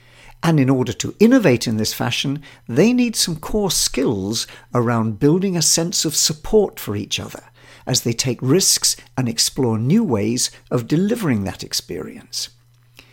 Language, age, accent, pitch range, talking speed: English, 60-79, British, 120-180 Hz, 155 wpm